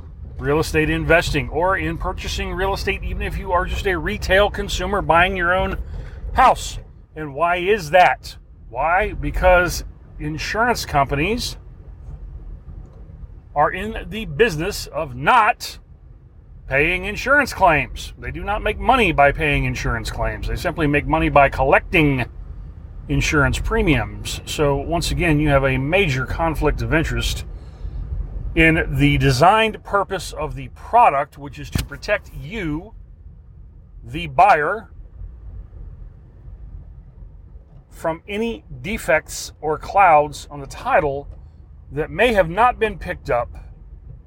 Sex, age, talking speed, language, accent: male, 40-59, 125 wpm, English, American